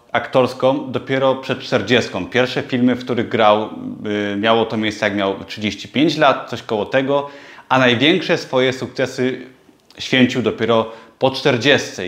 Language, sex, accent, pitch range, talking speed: Polish, male, native, 130-160 Hz, 135 wpm